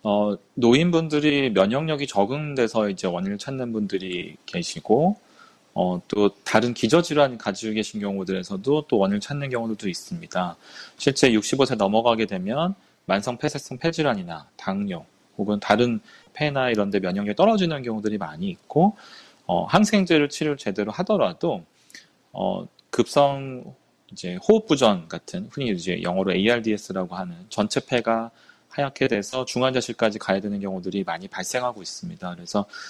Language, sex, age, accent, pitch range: Korean, male, 30-49, native, 105-150 Hz